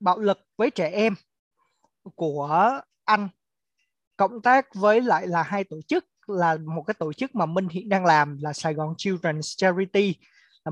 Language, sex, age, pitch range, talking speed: Vietnamese, male, 20-39, 170-235 Hz, 175 wpm